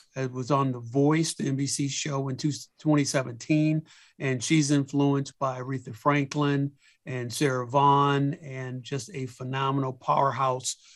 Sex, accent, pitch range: male, American, 130-145 Hz